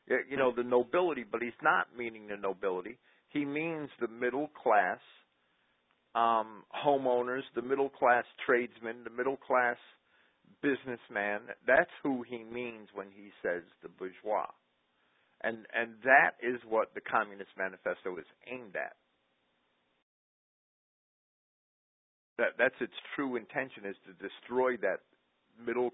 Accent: American